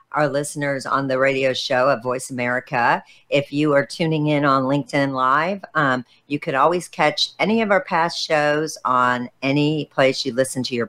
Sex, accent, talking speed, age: female, American, 185 wpm, 50-69